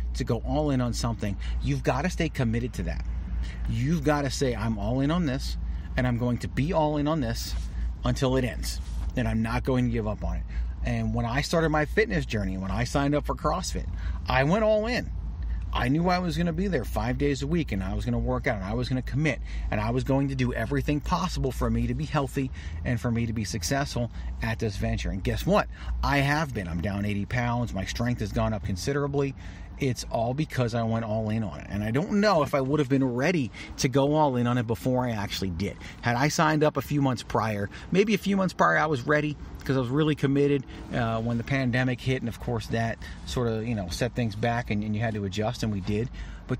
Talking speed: 255 wpm